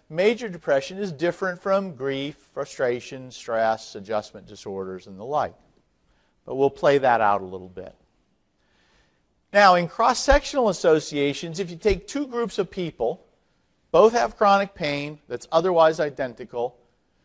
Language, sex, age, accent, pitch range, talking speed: English, male, 50-69, American, 125-180 Hz, 135 wpm